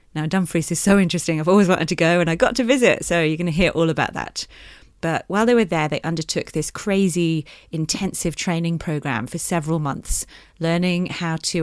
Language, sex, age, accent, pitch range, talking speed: English, female, 30-49, British, 150-180 Hz, 210 wpm